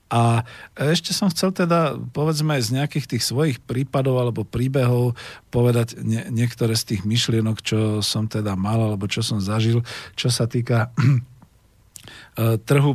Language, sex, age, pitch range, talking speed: Slovak, male, 50-69, 110-135 Hz, 140 wpm